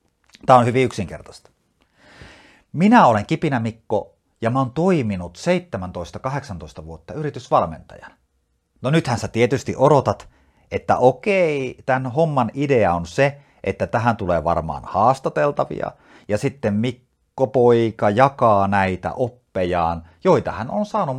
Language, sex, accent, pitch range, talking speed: Finnish, male, native, 90-145 Hz, 120 wpm